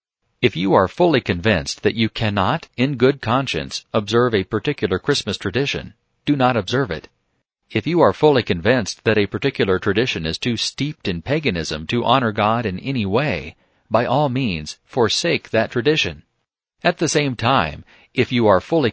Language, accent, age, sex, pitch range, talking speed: English, American, 40-59, male, 100-130 Hz, 170 wpm